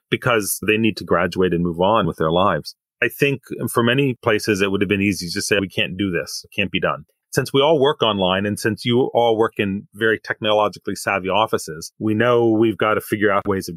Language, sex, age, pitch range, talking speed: English, male, 30-49, 100-120 Hz, 240 wpm